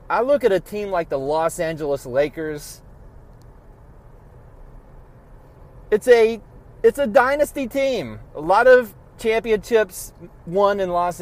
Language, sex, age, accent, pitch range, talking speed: English, male, 30-49, American, 145-225 Hz, 125 wpm